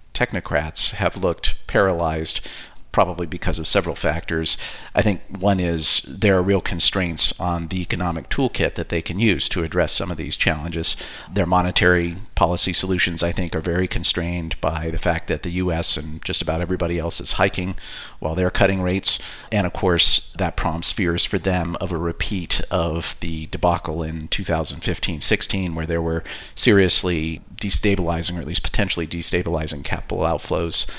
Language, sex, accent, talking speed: English, male, American, 165 wpm